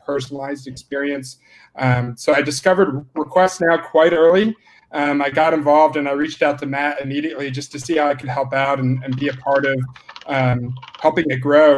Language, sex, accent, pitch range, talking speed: English, male, American, 135-155 Hz, 200 wpm